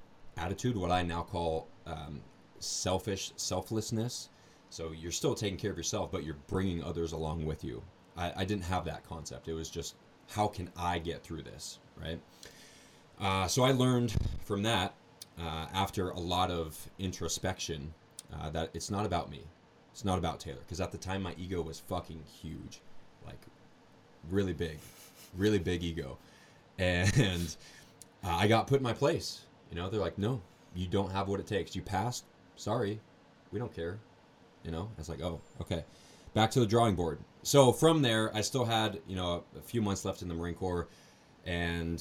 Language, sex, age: English, male, 30-49